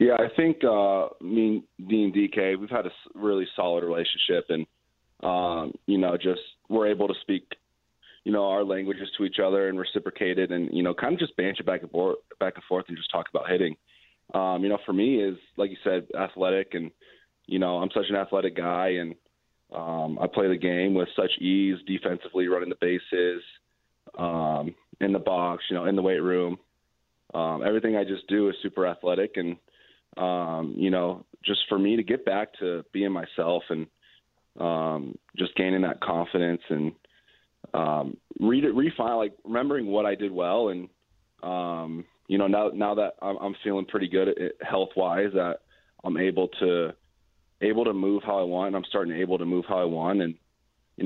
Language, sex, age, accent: English, male, 20-39, American